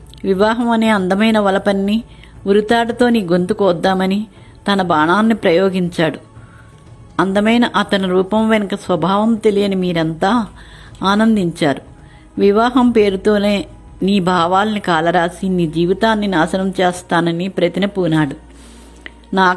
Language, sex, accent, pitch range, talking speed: Telugu, female, native, 175-215 Hz, 95 wpm